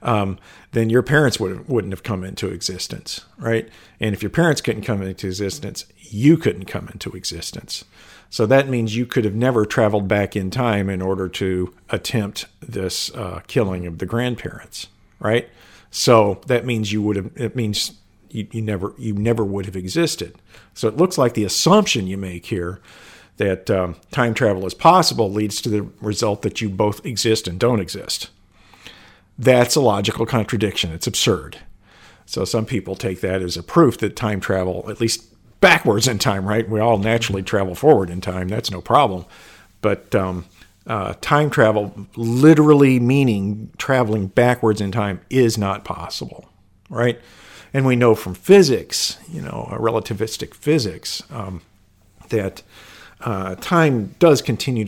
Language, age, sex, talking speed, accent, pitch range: English, 50-69, male, 165 wpm, American, 95-120 Hz